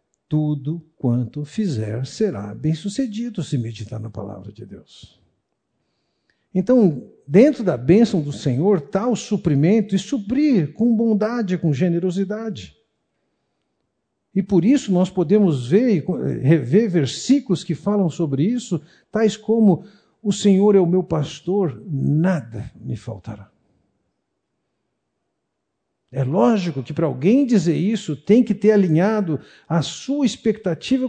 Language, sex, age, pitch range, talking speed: Portuguese, male, 60-79, 140-205 Hz, 125 wpm